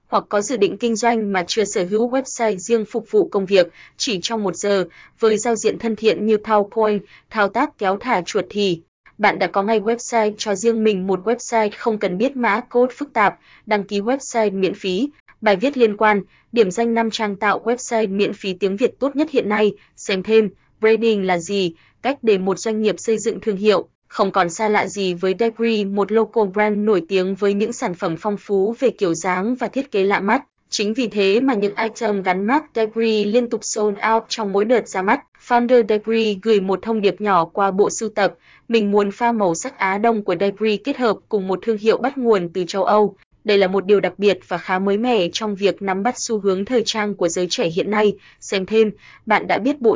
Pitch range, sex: 195-230 Hz, female